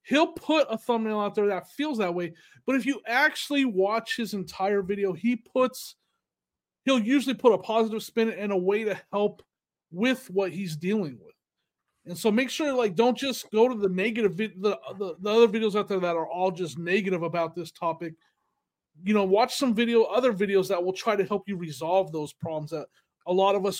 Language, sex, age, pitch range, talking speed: English, male, 30-49, 175-225 Hz, 215 wpm